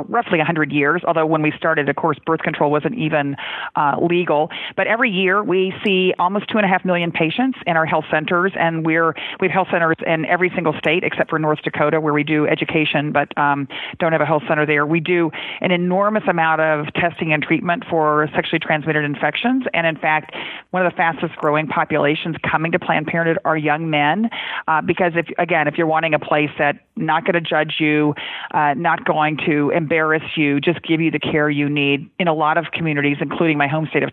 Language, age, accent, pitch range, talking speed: English, 40-59, American, 150-175 Hz, 215 wpm